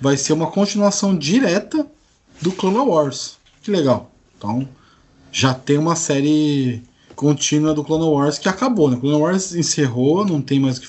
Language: Portuguese